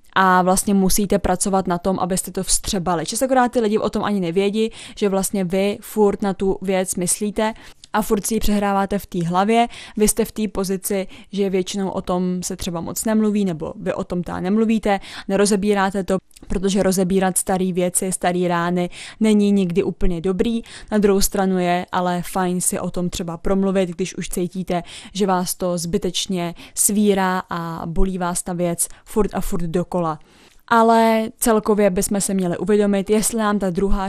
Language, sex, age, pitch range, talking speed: Czech, female, 20-39, 180-205 Hz, 175 wpm